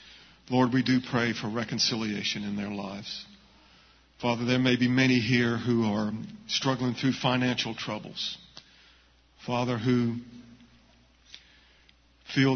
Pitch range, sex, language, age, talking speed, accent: 110-130 Hz, male, English, 50-69, 115 wpm, American